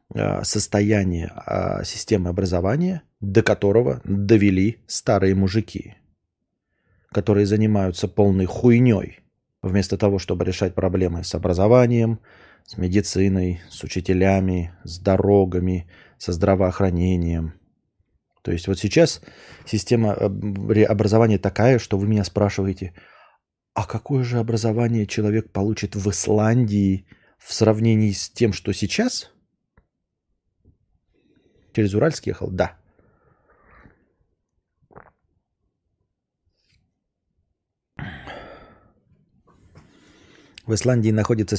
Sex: male